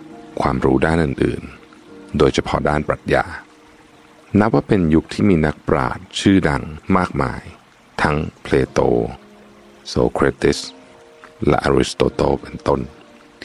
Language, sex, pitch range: Thai, male, 65-85 Hz